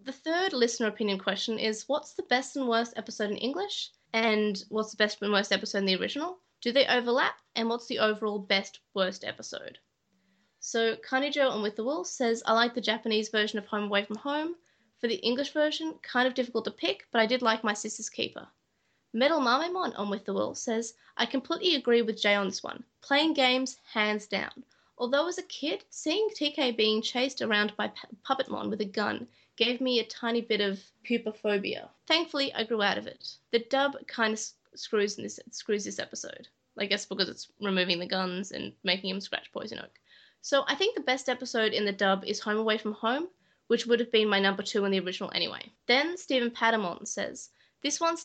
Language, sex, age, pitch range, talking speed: English, female, 20-39, 210-265 Hz, 210 wpm